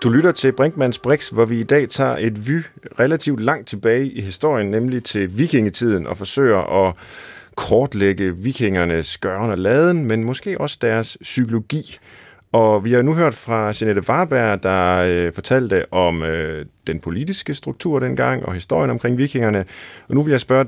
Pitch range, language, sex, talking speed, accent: 95-130 Hz, Danish, male, 170 wpm, native